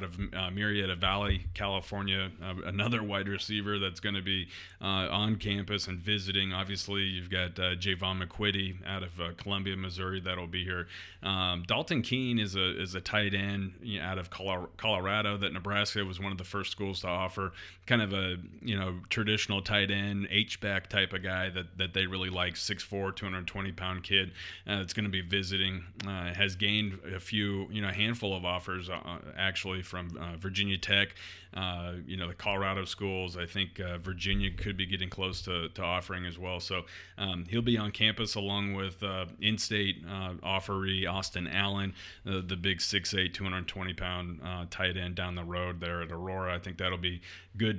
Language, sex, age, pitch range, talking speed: English, male, 30-49, 90-100 Hz, 195 wpm